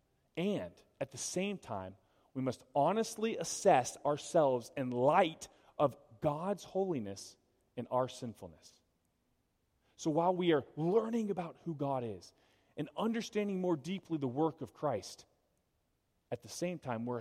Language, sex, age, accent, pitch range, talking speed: English, male, 30-49, American, 120-165 Hz, 140 wpm